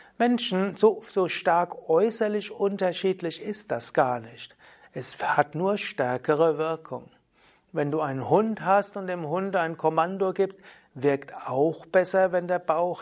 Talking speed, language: 145 wpm, German